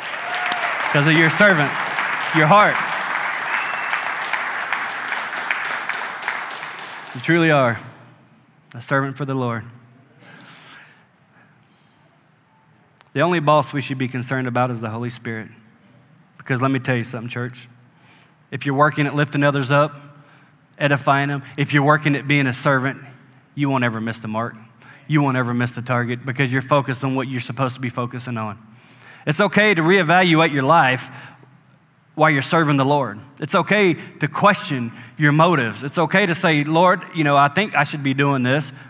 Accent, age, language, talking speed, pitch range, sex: American, 20-39, English, 160 wpm, 130-160 Hz, male